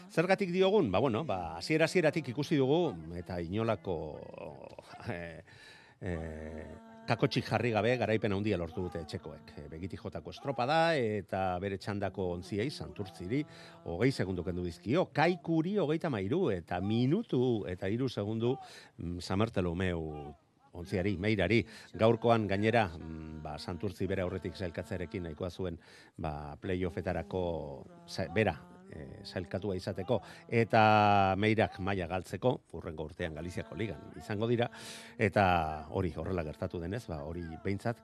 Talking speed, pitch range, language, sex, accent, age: 120 wpm, 90-120 Hz, Spanish, male, Spanish, 50-69